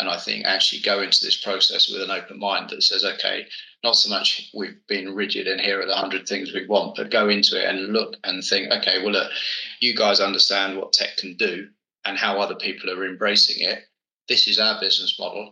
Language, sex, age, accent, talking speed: English, male, 20-39, British, 230 wpm